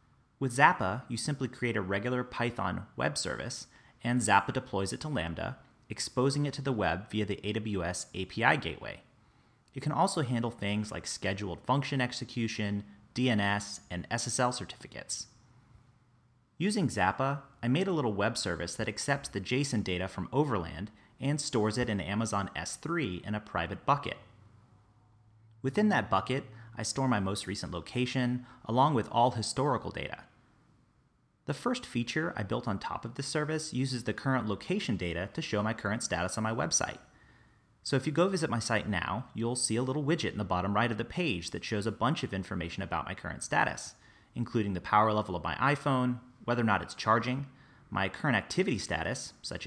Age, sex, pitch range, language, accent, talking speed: 30-49, male, 100-130 Hz, English, American, 180 wpm